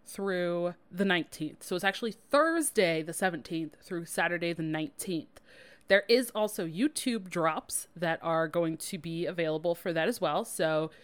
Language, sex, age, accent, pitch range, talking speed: English, female, 20-39, American, 160-195 Hz, 160 wpm